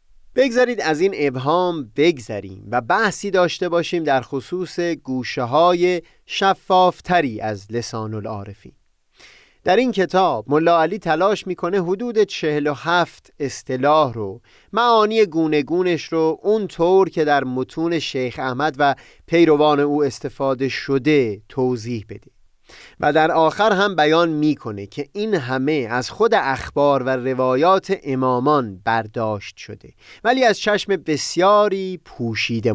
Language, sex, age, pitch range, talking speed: Persian, male, 30-49, 130-185 Hz, 125 wpm